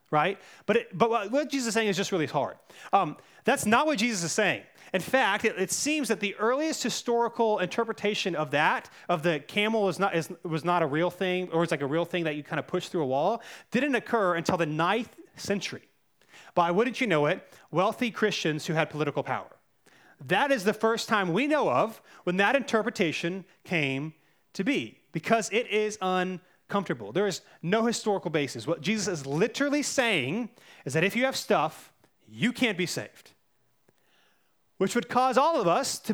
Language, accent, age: English, American, 30-49